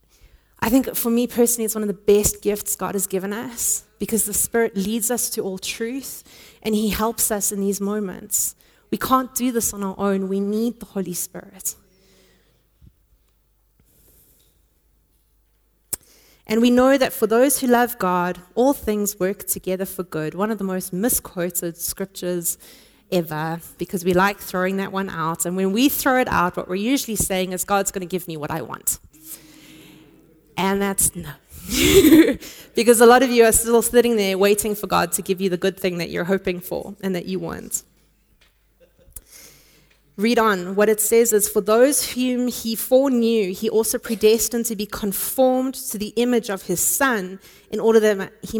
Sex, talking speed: female, 180 wpm